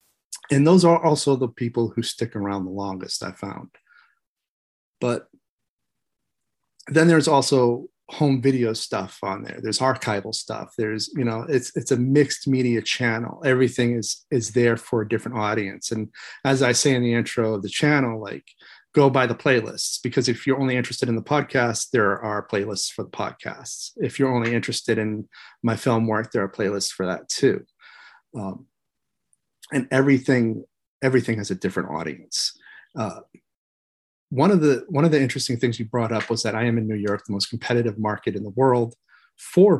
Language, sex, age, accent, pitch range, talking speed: English, male, 30-49, American, 110-135 Hz, 180 wpm